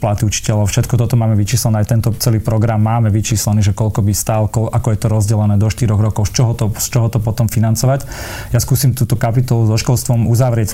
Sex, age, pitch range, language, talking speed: male, 30-49, 105-115 Hz, Slovak, 210 wpm